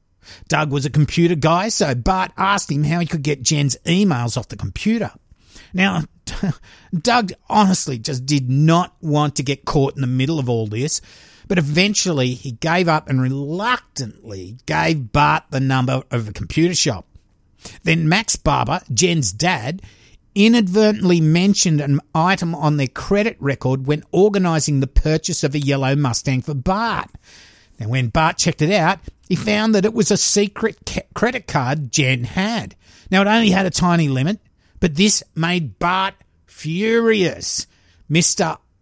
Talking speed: 160 wpm